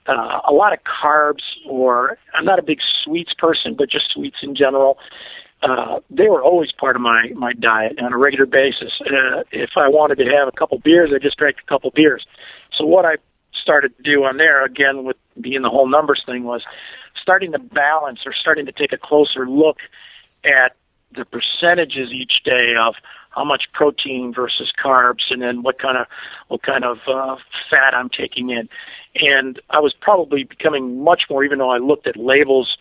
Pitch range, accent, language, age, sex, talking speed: 125-145 Hz, American, English, 50-69, male, 200 wpm